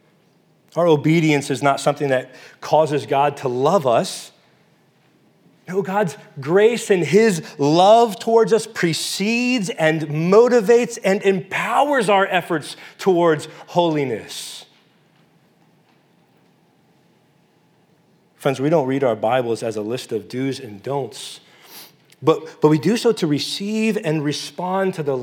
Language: English